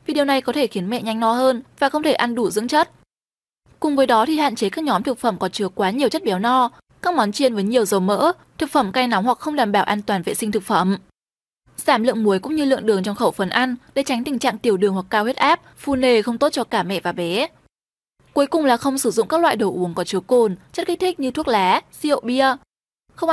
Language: Vietnamese